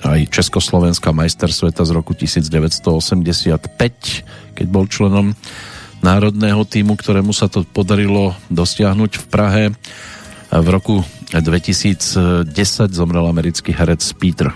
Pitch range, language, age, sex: 85-105 Hz, Slovak, 50-69, male